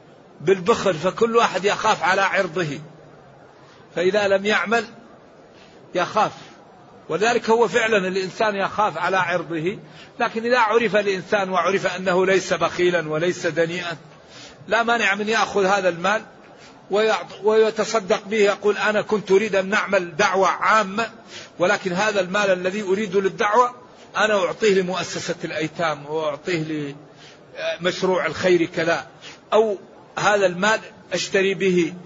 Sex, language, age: male, Arabic, 50-69